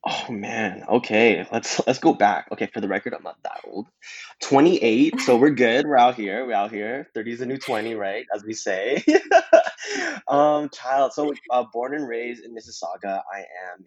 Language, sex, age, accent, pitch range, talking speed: English, male, 20-39, American, 95-125 Hz, 200 wpm